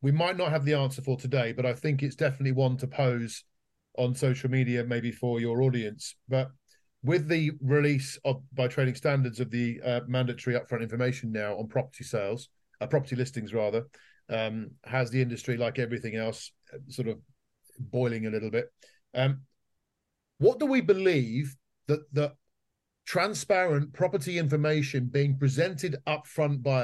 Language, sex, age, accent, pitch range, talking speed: English, male, 40-59, British, 120-145 Hz, 160 wpm